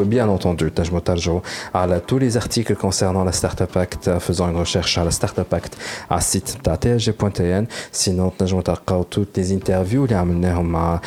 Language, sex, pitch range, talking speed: Arabic, male, 90-105 Hz, 165 wpm